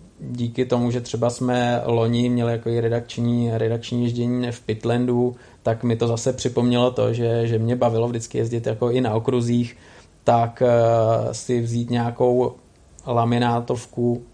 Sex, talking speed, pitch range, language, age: male, 145 wpm, 110-120 Hz, Czech, 20-39